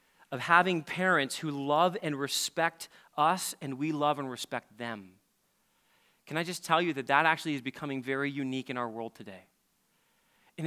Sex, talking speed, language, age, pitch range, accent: male, 175 wpm, English, 30-49, 145-205 Hz, American